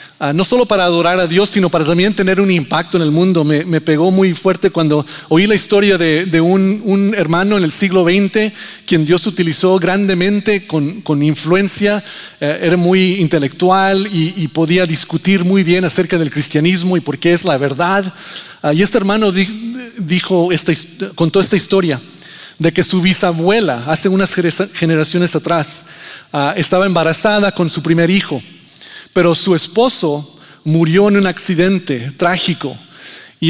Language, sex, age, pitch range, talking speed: Spanish, male, 40-59, 160-195 Hz, 170 wpm